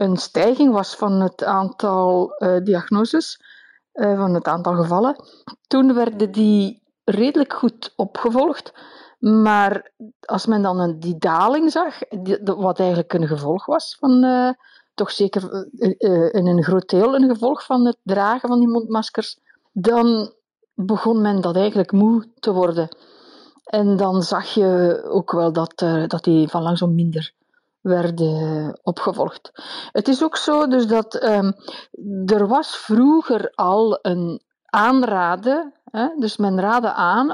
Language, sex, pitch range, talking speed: Dutch, female, 185-250 Hz, 140 wpm